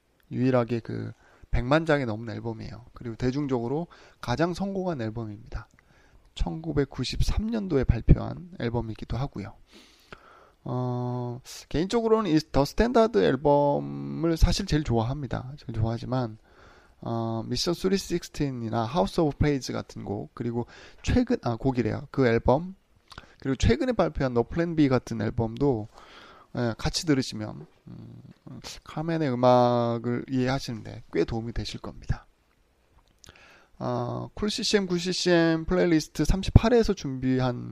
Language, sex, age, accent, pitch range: Korean, male, 20-39, native, 115-155 Hz